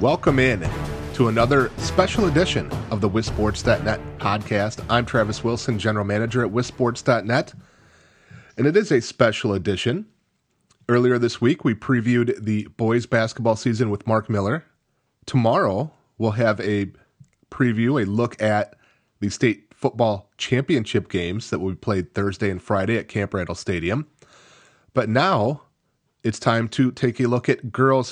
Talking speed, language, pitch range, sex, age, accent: 145 wpm, English, 105-125 Hz, male, 30-49, American